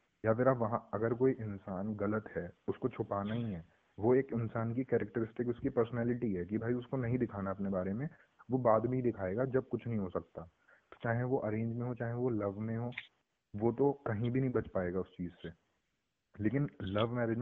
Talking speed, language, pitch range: 215 wpm, Hindi, 105-120 Hz